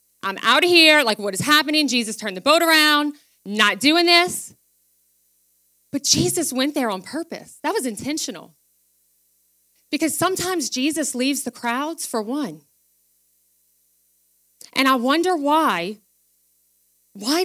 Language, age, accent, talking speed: English, 30-49, American, 130 wpm